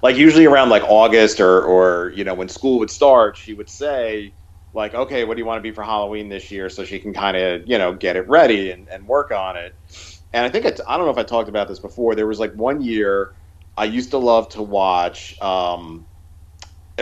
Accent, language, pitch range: American, English, 90-120 Hz